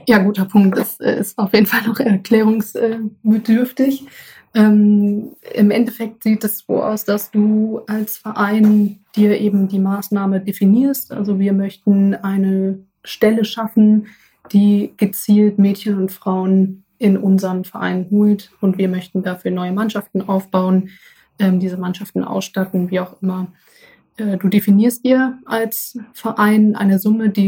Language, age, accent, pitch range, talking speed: German, 20-39, German, 195-215 Hz, 135 wpm